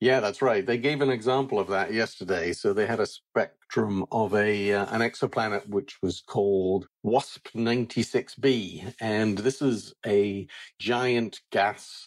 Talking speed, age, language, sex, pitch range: 150 wpm, 50-69, English, male, 100-120 Hz